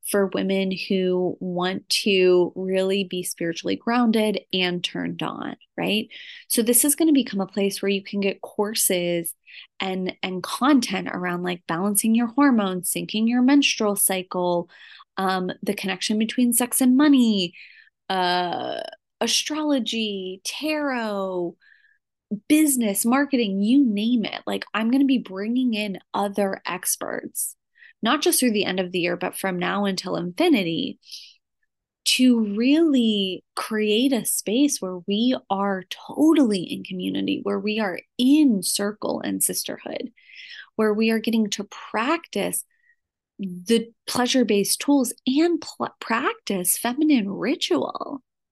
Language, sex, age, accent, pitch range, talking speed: English, female, 20-39, American, 190-275 Hz, 130 wpm